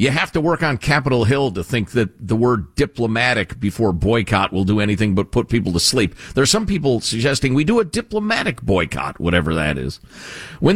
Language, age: English, 50-69